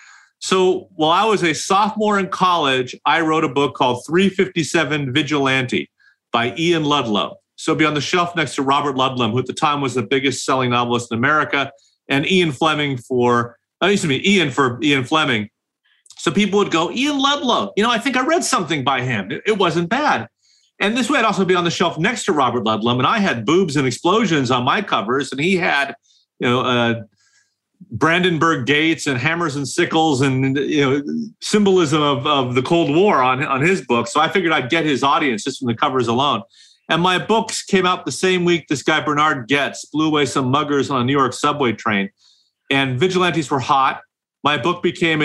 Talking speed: 205 wpm